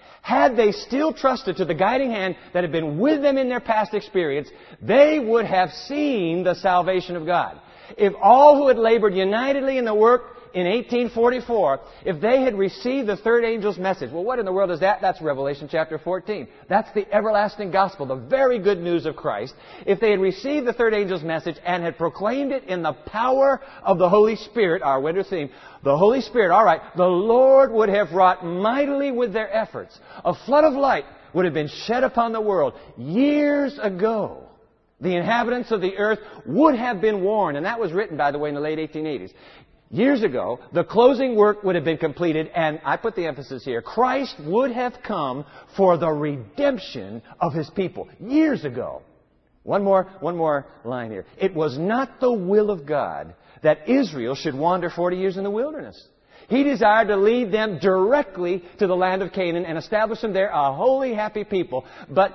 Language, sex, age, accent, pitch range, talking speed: English, male, 50-69, American, 170-235 Hz, 195 wpm